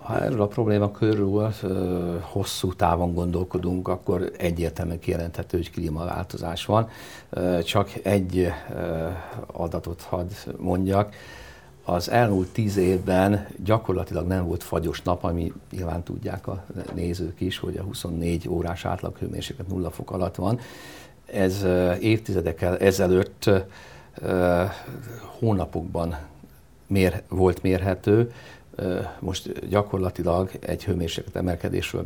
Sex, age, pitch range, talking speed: male, 50-69, 85-100 Hz, 105 wpm